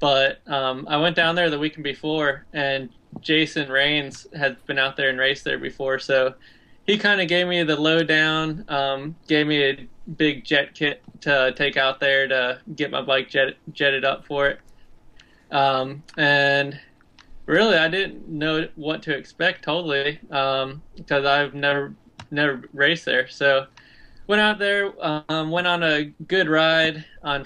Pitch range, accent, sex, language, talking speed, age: 135-155 Hz, American, male, English, 170 wpm, 20-39